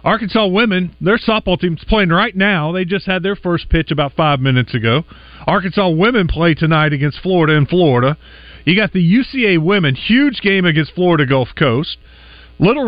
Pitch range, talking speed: 135-180 Hz, 180 wpm